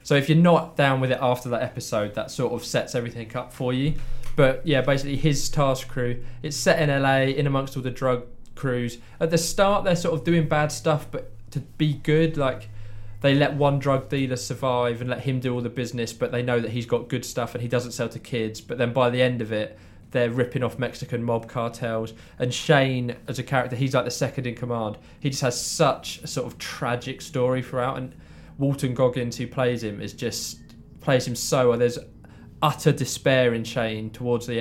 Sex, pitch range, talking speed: male, 120-135 Hz, 220 wpm